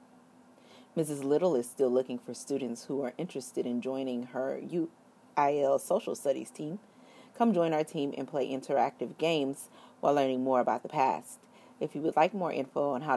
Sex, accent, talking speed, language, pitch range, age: female, American, 180 wpm, English, 125-165 Hz, 40-59